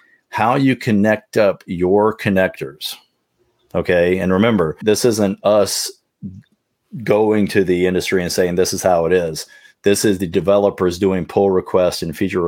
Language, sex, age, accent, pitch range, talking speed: English, male, 40-59, American, 90-105 Hz, 155 wpm